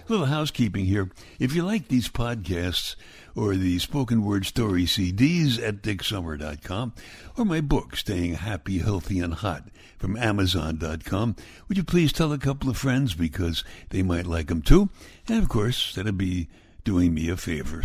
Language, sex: English, male